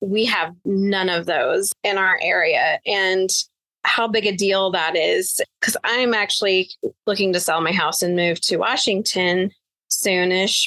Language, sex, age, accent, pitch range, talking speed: English, female, 20-39, American, 185-225 Hz, 155 wpm